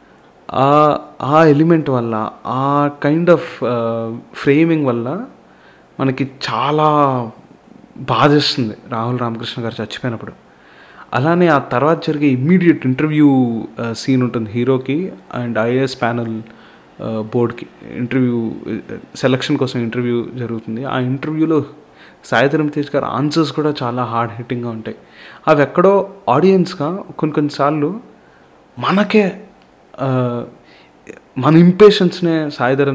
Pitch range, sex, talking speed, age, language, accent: 120-150 Hz, male, 95 wpm, 30-49, Telugu, native